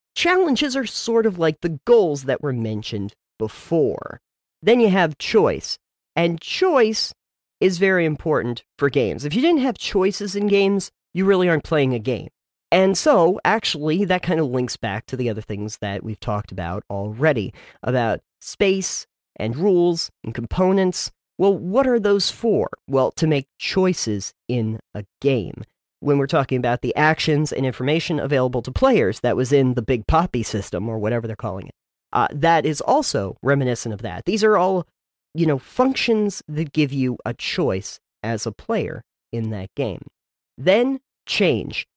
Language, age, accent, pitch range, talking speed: English, 40-59, American, 120-185 Hz, 170 wpm